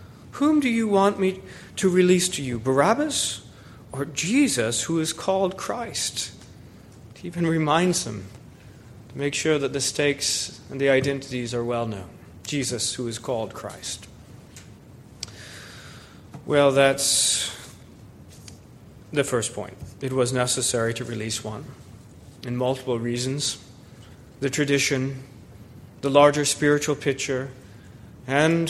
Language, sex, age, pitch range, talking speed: English, male, 30-49, 120-165 Hz, 120 wpm